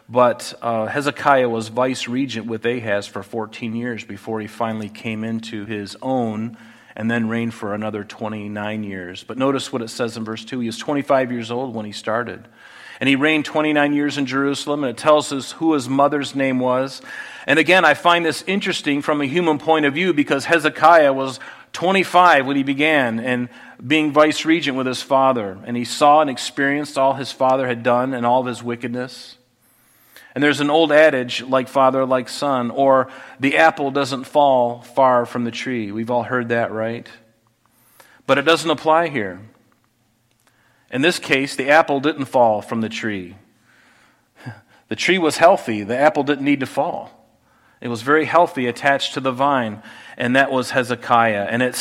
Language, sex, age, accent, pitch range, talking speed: English, male, 40-59, American, 115-145 Hz, 185 wpm